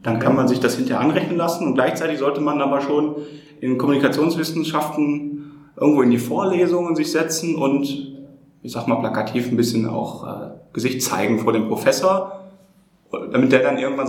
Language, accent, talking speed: German, German, 165 wpm